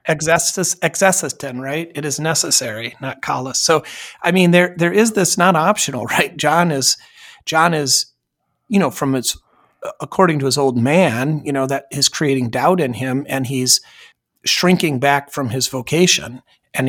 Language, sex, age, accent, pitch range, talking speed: English, male, 40-59, American, 130-170 Hz, 170 wpm